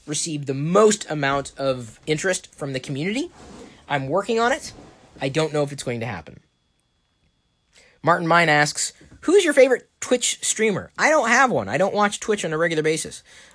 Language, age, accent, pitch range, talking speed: English, 20-39, American, 120-165 Hz, 180 wpm